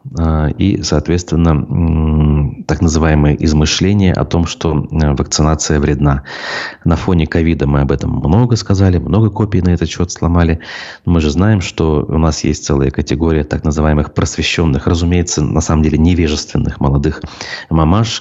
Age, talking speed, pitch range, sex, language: 30-49, 145 wpm, 75-90 Hz, male, Russian